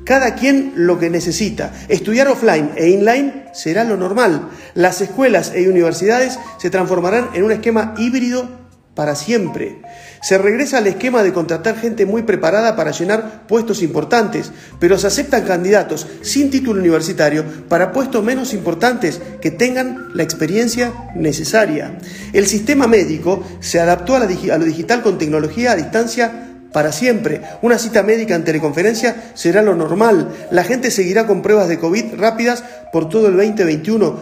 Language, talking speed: Spanish, 155 wpm